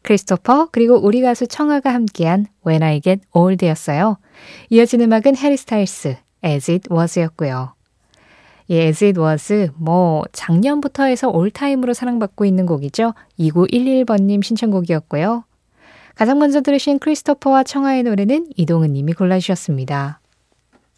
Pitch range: 165-240 Hz